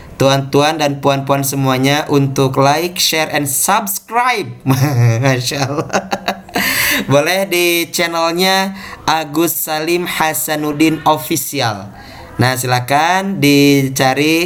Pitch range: 130-155 Hz